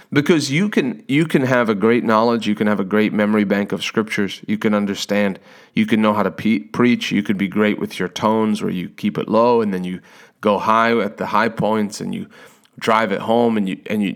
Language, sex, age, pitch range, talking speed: English, male, 30-49, 105-130 Hz, 245 wpm